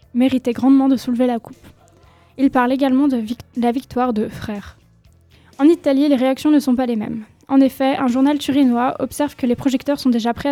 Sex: female